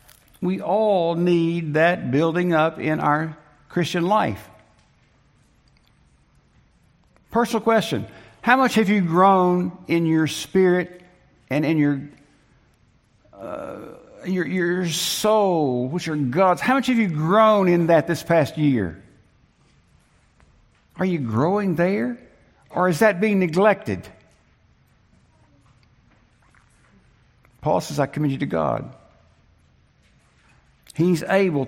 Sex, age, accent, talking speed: male, 60-79, American, 110 wpm